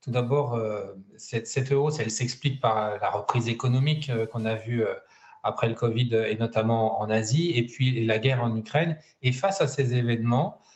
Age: 40-59